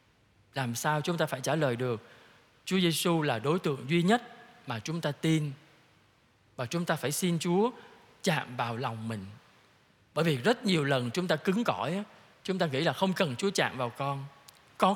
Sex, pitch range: male, 125-170 Hz